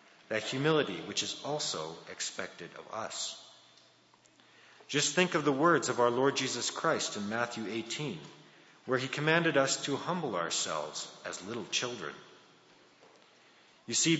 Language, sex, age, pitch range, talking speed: English, male, 40-59, 115-155 Hz, 140 wpm